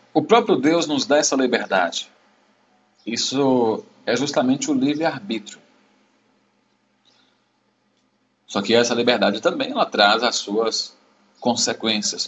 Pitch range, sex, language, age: 95-150 Hz, male, Portuguese, 40-59